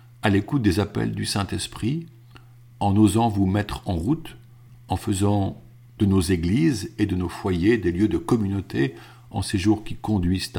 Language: French